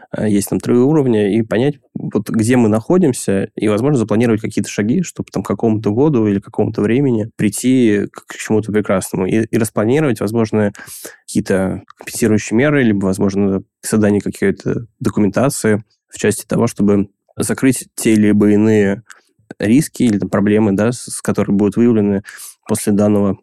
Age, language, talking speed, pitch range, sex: 20-39, Russian, 155 wpm, 100-115 Hz, male